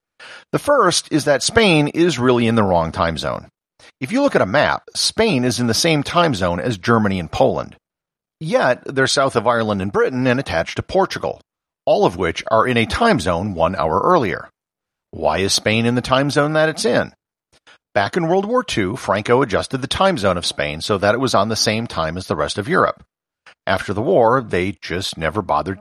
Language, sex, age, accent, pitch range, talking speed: English, male, 50-69, American, 100-155 Hz, 215 wpm